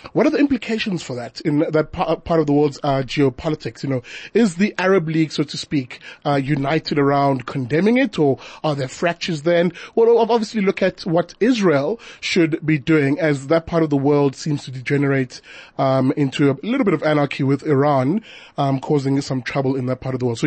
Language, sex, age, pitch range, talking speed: English, male, 30-49, 145-190 Hz, 210 wpm